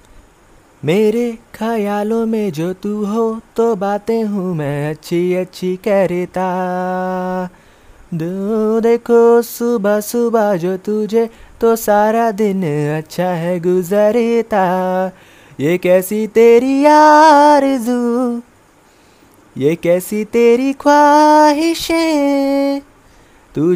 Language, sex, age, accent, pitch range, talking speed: Hindi, male, 20-39, native, 185-245 Hz, 85 wpm